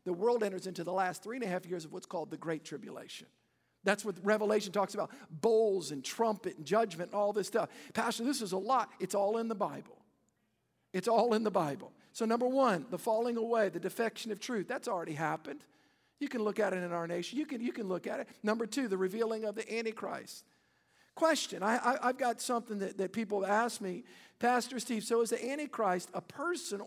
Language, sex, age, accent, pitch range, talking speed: English, male, 50-69, American, 200-240 Hz, 225 wpm